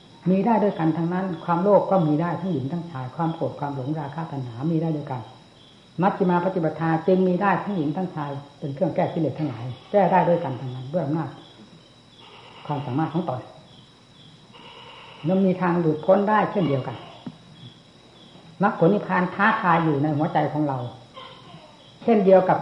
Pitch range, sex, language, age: 140-180 Hz, female, Thai, 60-79